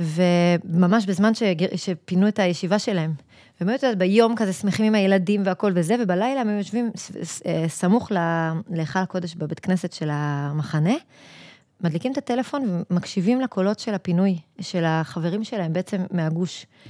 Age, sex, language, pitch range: 20-39, female, Hebrew, 175-225 Hz